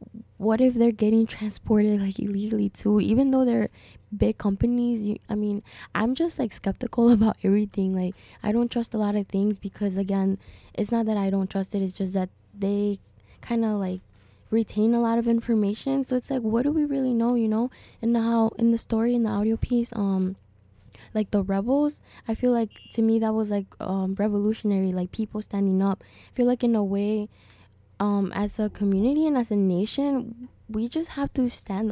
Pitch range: 195-225 Hz